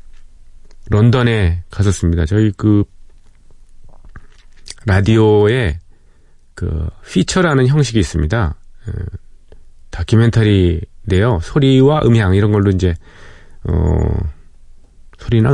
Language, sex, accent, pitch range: Korean, male, native, 85-110 Hz